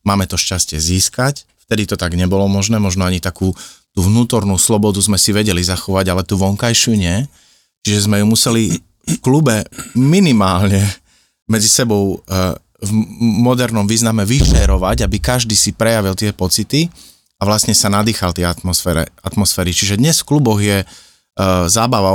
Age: 30-49